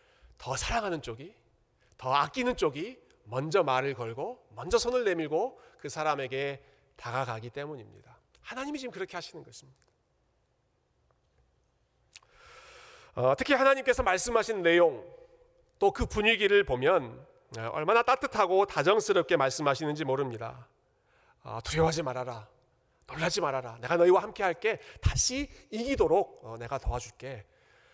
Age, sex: 40-59, male